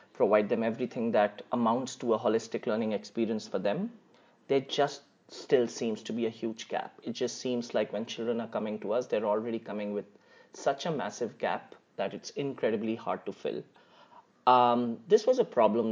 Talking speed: 190 wpm